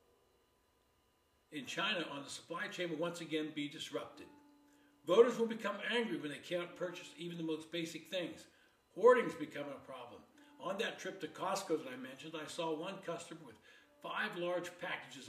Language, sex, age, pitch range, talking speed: English, male, 60-79, 160-220 Hz, 175 wpm